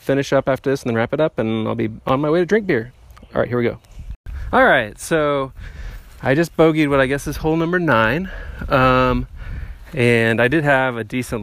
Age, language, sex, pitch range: 30-49, English, male, 100-135 Hz